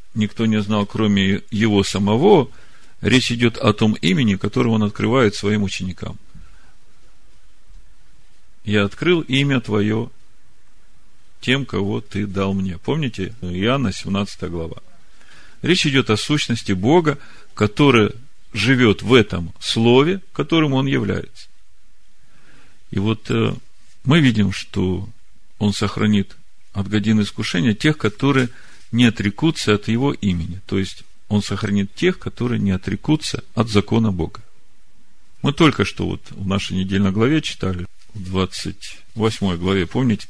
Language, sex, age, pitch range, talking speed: Russian, male, 40-59, 95-115 Hz, 125 wpm